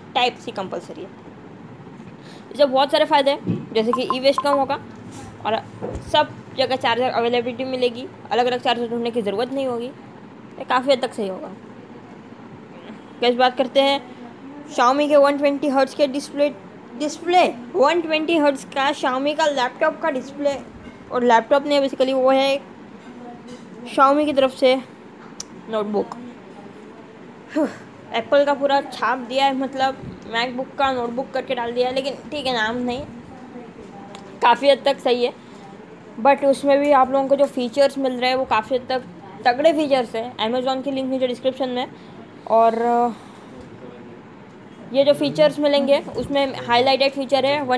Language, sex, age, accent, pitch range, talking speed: Hindi, female, 20-39, native, 240-275 Hz, 155 wpm